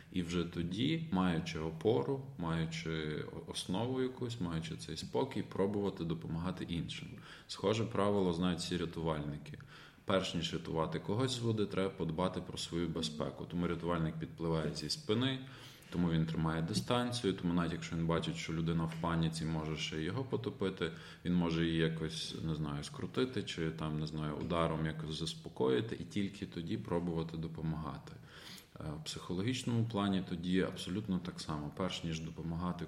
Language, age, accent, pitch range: Ukrainian, 20-39, native, 80-100 Hz